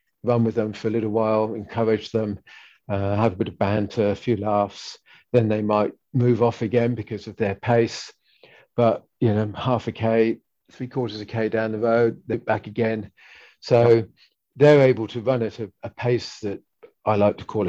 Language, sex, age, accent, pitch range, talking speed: English, male, 50-69, British, 105-120 Hz, 195 wpm